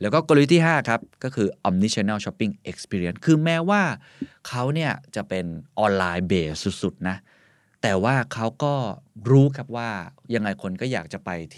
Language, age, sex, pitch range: Thai, 20-39, male, 95-130 Hz